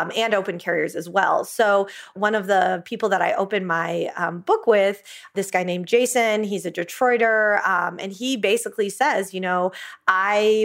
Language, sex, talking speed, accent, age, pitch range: English, female, 180 wpm, American, 20-39, 185-225 Hz